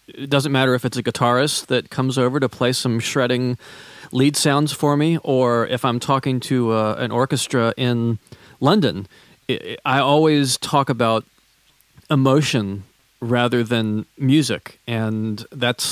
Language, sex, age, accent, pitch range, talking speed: English, male, 40-59, American, 120-145 Hz, 145 wpm